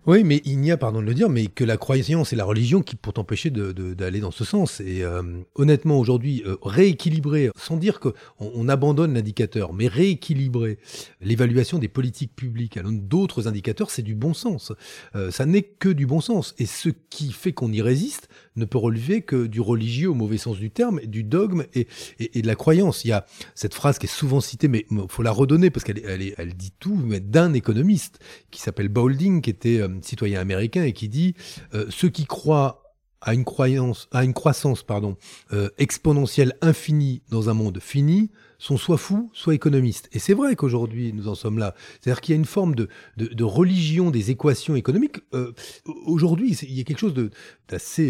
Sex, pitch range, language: male, 110-160 Hz, French